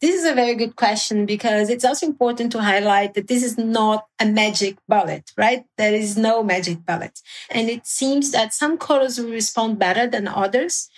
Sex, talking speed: female, 195 wpm